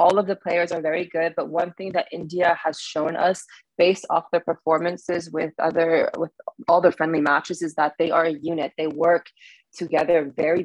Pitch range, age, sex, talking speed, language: 155-180 Hz, 20-39, female, 205 wpm, English